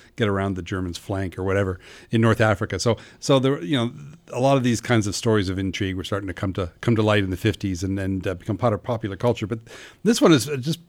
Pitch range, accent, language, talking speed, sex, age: 105-130 Hz, American, English, 265 wpm, male, 40-59